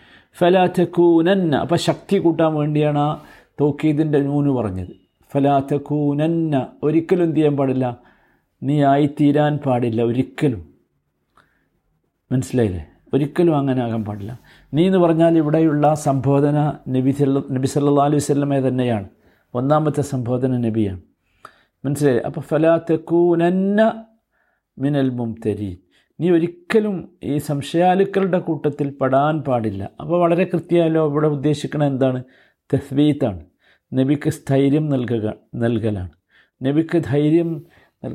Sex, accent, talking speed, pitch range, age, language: male, native, 100 wpm, 130-175 Hz, 50-69, Malayalam